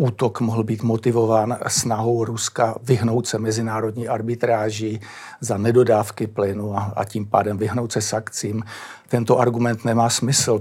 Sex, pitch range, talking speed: male, 110-120 Hz, 130 wpm